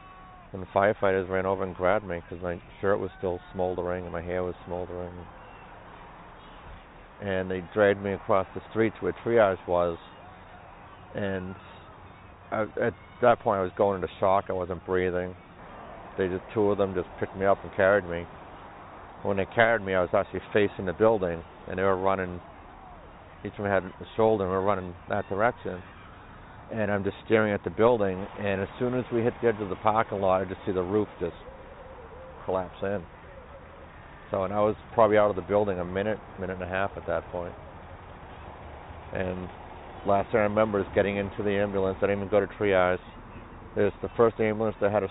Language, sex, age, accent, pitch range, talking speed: English, male, 50-69, American, 90-100 Hz, 200 wpm